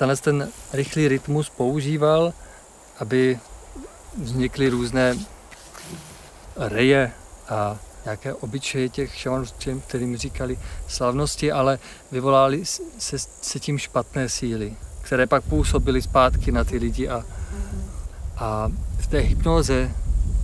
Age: 40-59